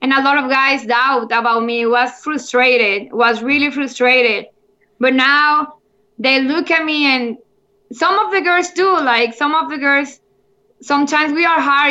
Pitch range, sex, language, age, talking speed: 235-275 Hz, female, English, 10-29, 180 wpm